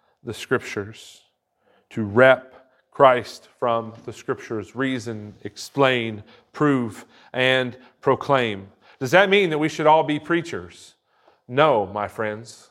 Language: English